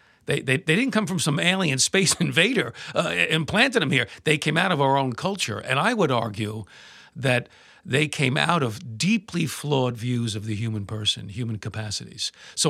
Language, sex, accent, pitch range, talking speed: English, male, American, 115-170 Hz, 190 wpm